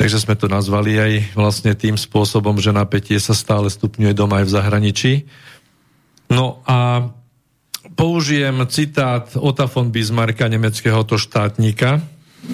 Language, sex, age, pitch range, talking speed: Slovak, male, 50-69, 105-140 Hz, 130 wpm